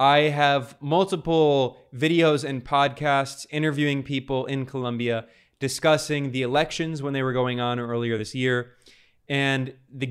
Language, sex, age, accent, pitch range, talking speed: English, male, 20-39, American, 130-155 Hz, 135 wpm